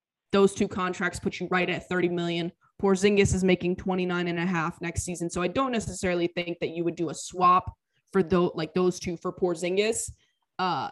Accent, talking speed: American, 205 wpm